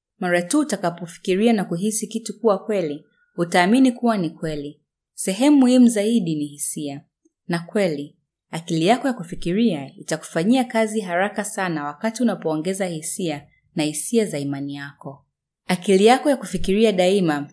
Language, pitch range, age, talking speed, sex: Swahili, 155-215 Hz, 20-39, 135 wpm, female